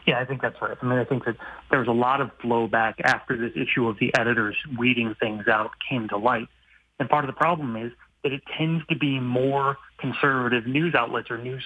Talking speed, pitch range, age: 230 wpm, 115-140 Hz, 30-49